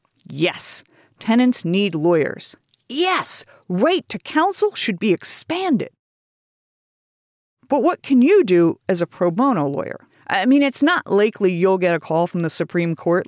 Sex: female